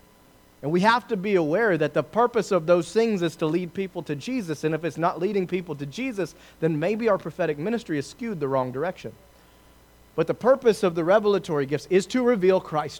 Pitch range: 130-190 Hz